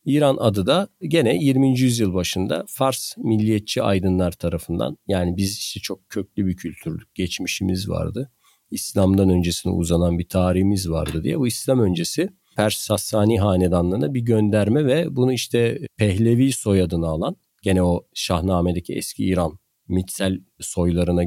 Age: 40-59